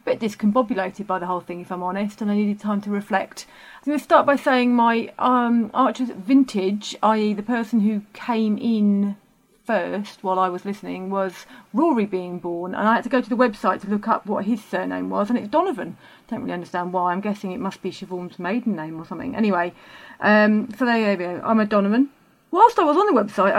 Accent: British